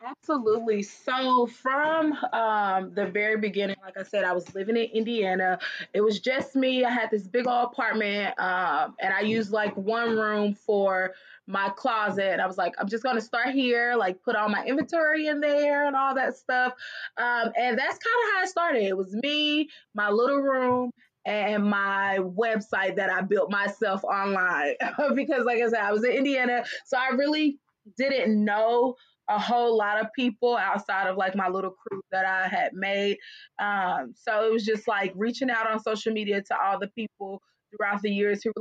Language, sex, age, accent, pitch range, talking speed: English, female, 20-39, American, 200-260 Hz, 195 wpm